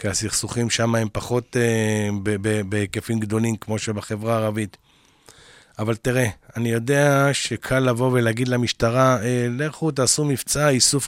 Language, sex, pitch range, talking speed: Hebrew, male, 115-145 Hz, 145 wpm